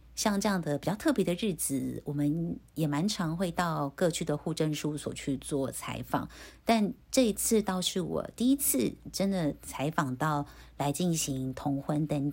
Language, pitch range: Chinese, 150-225 Hz